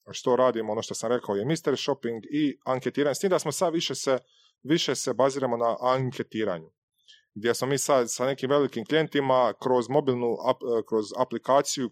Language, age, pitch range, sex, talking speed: Croatian, 30-49, 120-145 Hz, male, 175 wpm